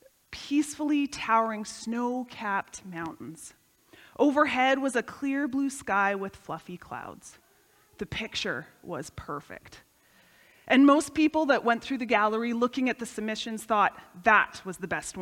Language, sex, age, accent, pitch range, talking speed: English, female, 30-49, American, 215-295 Hz, 135 wpm